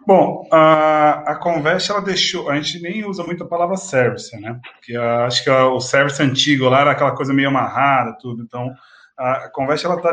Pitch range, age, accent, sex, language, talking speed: 125-165 Hz, 20-39, Brazilian, male, Portuguese, 215 wpm